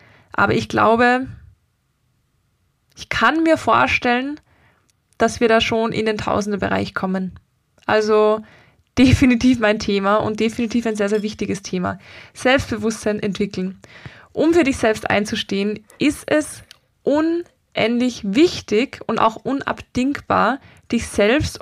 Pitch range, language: 215-255 Hz, German